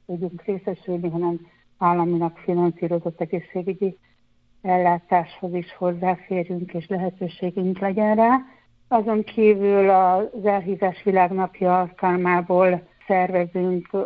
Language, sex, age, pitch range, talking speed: Hungarian, female, 60-79, 175-195 Hz, 85 wpm